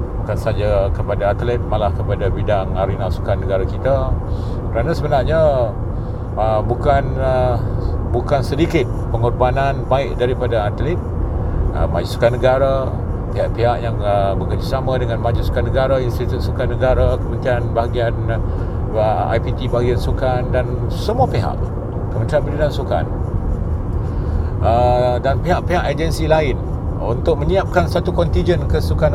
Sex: male